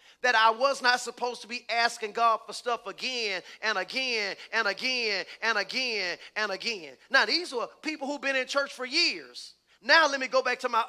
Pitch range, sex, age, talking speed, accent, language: 240-300 Hz, male, 30-49, 205 wpm, American, English